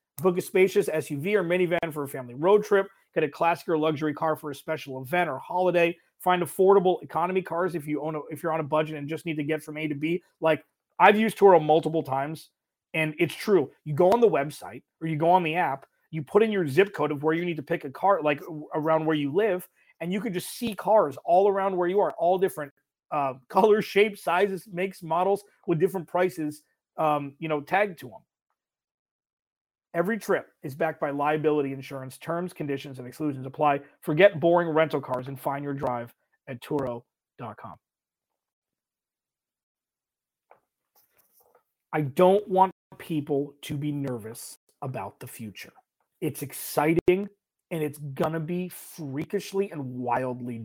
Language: English